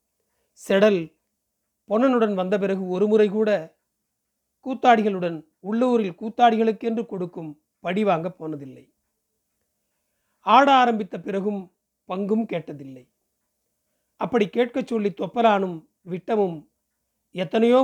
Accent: native